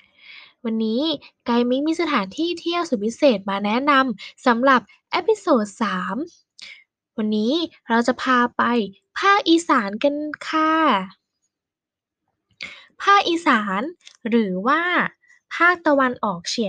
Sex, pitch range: female, 230-325 Hz